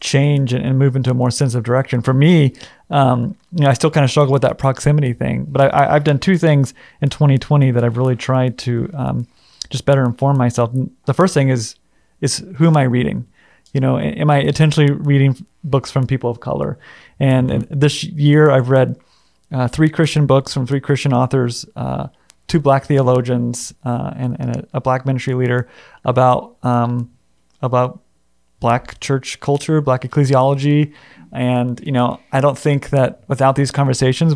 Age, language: 30-49, English